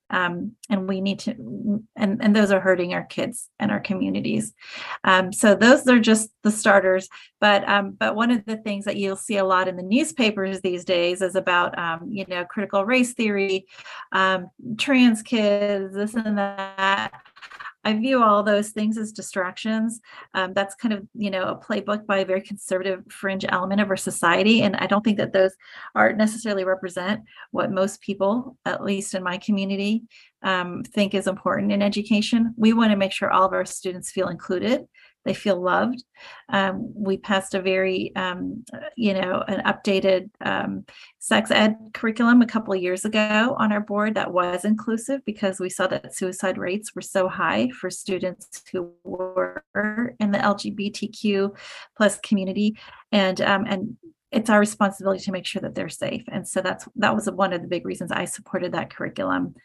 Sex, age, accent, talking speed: female, 30-49, American, 185 wpm